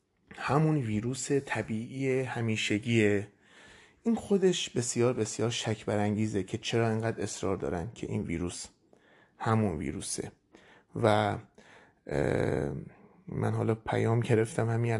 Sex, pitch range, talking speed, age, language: male, 110-125 Hz, 105 wpm, 30-49, Persian